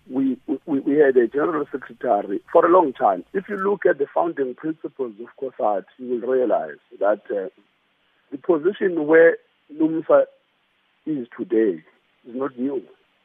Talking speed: 155 wpm